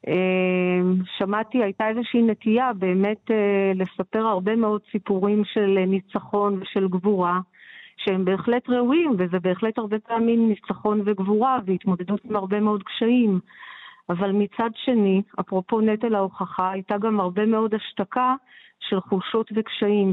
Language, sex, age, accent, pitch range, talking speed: Hebrew, female, 40-59, native, 195-220 Hz, 120 wpm